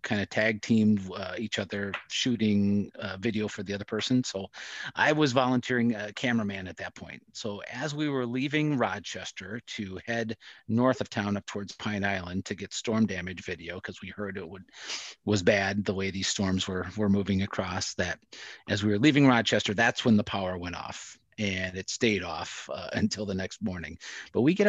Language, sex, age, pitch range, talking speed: English, male, 40-59, 100-120 Hz, 195 wpm